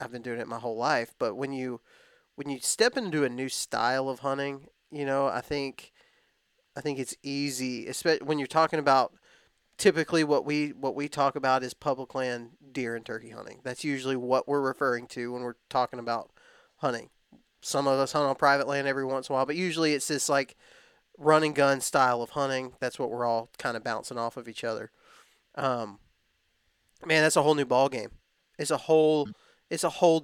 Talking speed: 210 wpm